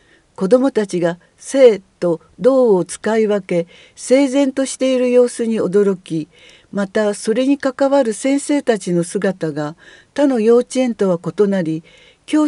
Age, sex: 50-69, female